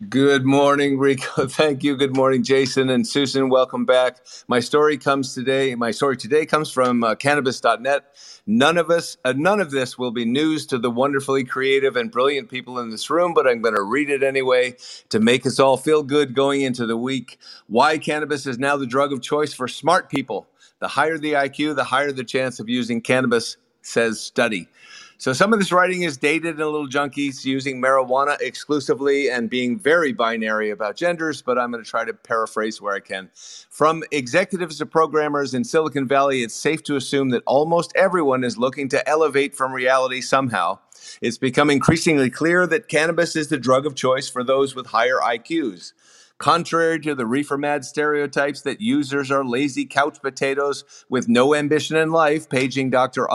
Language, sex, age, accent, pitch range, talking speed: English, male, 50-69, American, 130-150 Hz, 190 wpm